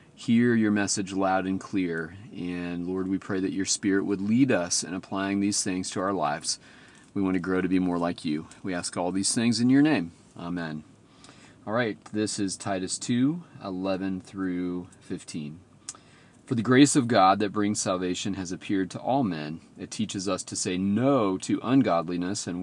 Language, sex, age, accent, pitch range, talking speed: English, male, 40-59, American, 90-105 Hz, 190 wpm